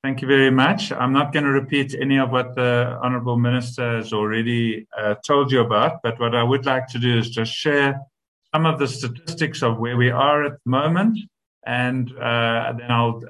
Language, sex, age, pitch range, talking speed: English, male, 50-69, 115-140 Hz, 210 wpm